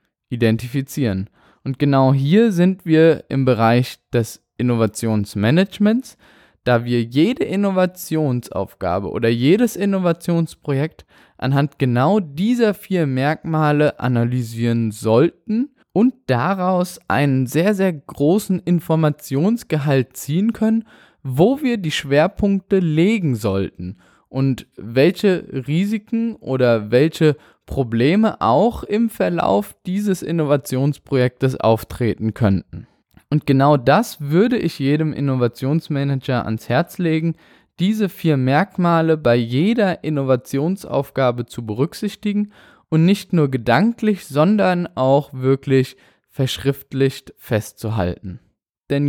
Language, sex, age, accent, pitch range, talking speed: German, male, 10-29, German, 125-185 Hz, 100 wpm